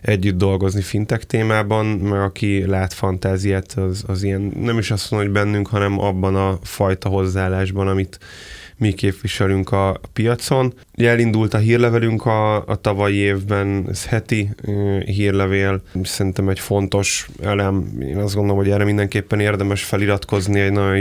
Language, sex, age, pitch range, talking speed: Hungarian, male, 20-39, 95-110 Hz, 145 wpm